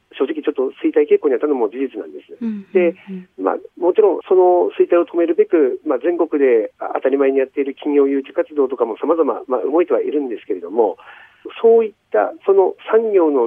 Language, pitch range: Japanese, 290-435 Hz